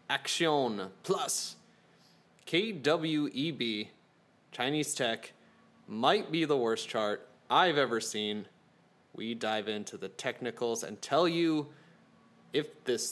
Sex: male